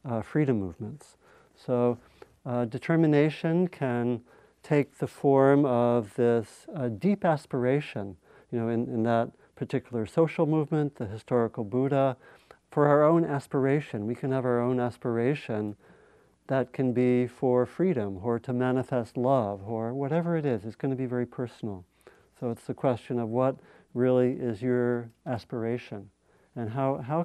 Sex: male